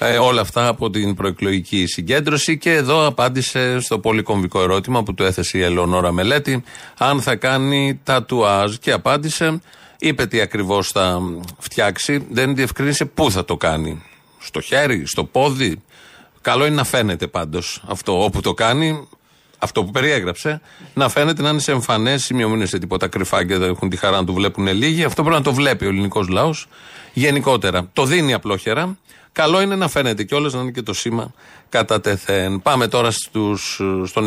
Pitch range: 100-145 Hz